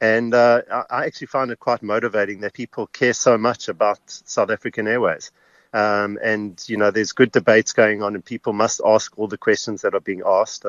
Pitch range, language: 100-125 Hz, English